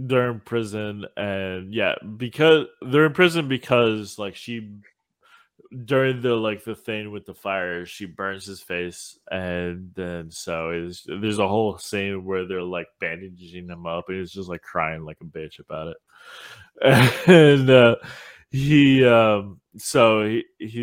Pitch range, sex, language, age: 90-120 Hz, male, English, 20-39